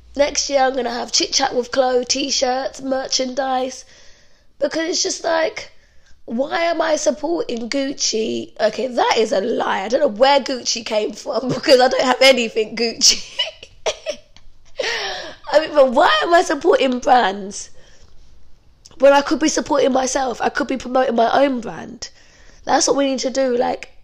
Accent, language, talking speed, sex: British, English, 165 wpm, female